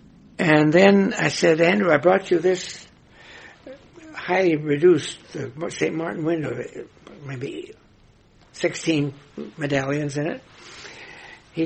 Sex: male